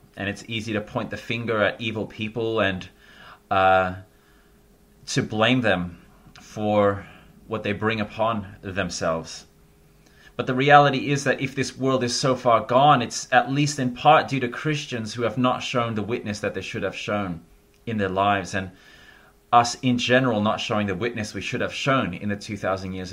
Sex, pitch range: male, 100-120 Hz